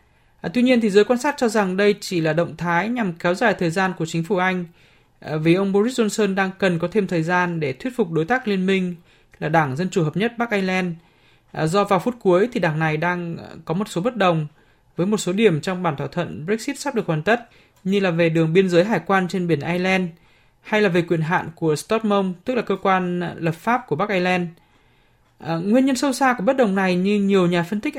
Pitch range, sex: 165-205 Hz, male